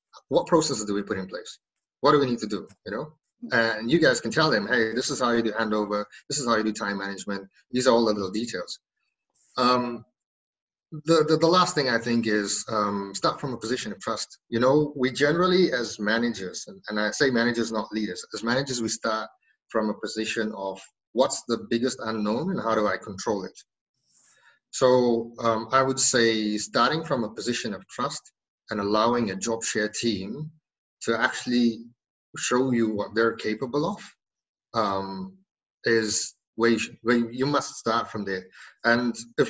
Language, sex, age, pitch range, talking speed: English, male, 30-49, 105-125 Hz, 190 wpm